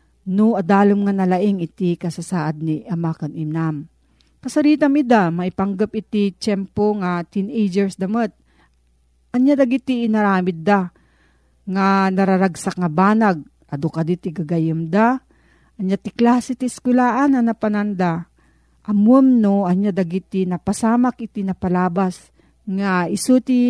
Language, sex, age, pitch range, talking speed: Filipino, female, 40-59, 175-230 Hz, 115 wpm